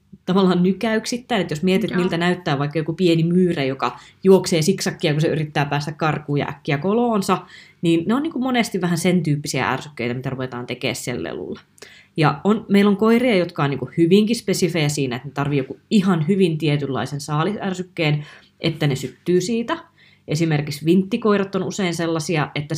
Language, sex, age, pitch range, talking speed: Finnish, female, 20-39, 145-185 Hz, 175 wpm